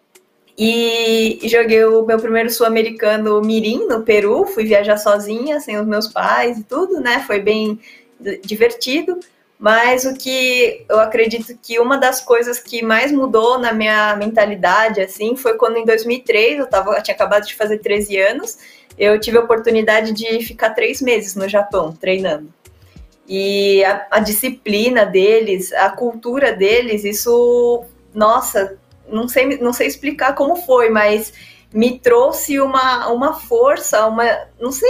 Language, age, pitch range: Portuguese, 20-39, 215-255 Hz